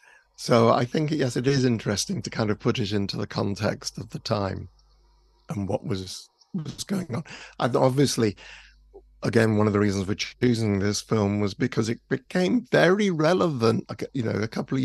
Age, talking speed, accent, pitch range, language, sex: 50-69, 185 wpm, British, 105-130 Hz, English, male